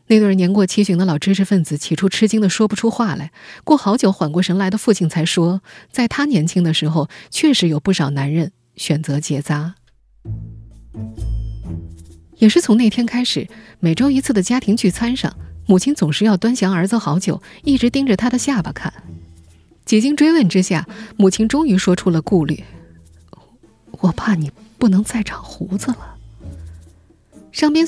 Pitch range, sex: 150-215 Hz, female